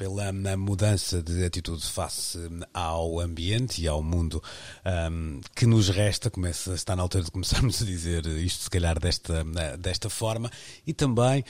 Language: Portuguese